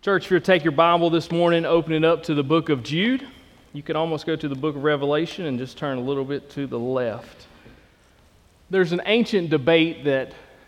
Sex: male